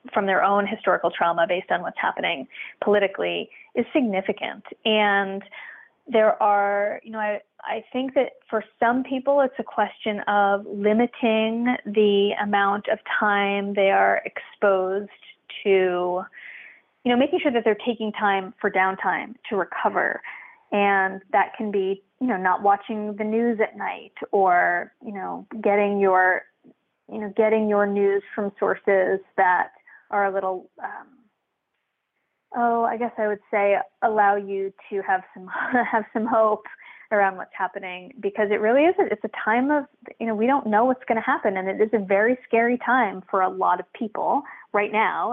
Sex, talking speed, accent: female, 170 wpm, American